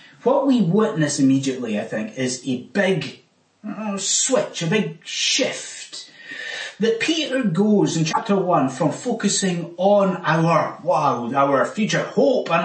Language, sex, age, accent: English, male, 30-49, British